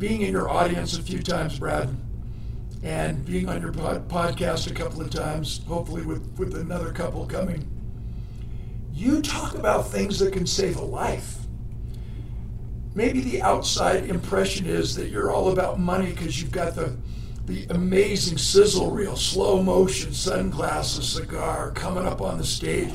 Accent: American